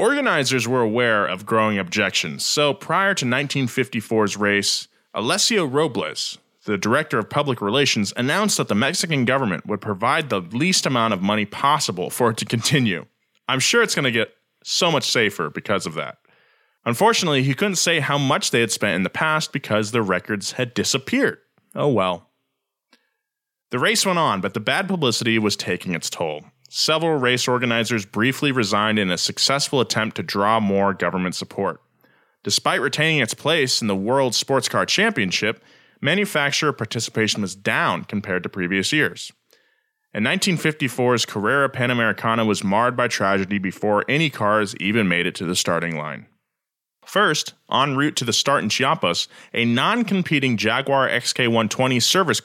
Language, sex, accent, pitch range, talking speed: English, male, American, 105-145 Hz, 160 wpm